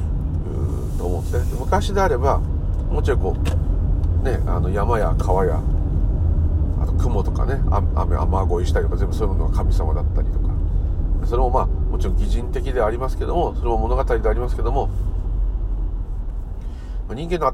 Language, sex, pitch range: Japanese, male, 80-95 Hz